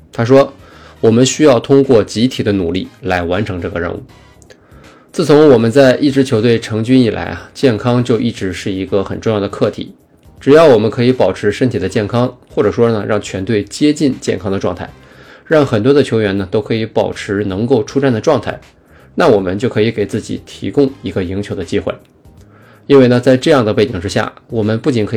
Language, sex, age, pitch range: Chinese, male, 20-39, 100-125 Hz